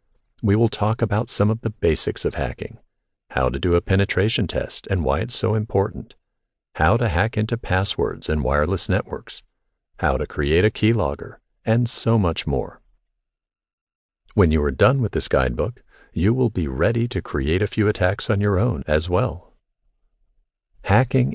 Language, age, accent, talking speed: English, 50-69, American, 170 wpm